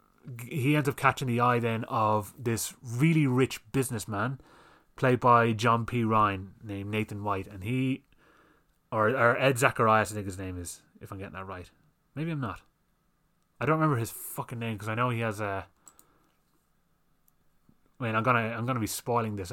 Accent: British